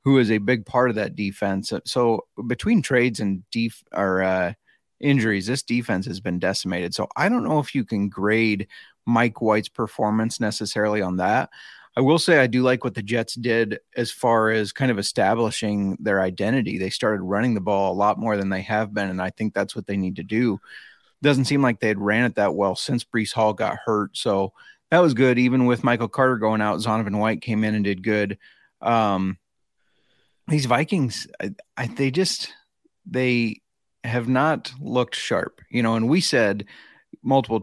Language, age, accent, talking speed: English, 30-49, American, 195 wpm